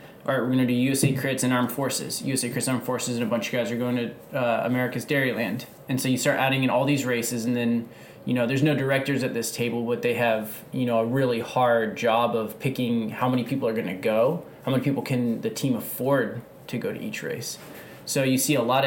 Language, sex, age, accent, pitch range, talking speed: English, male, 20-39, American, 115-130 Hz, 250 wpm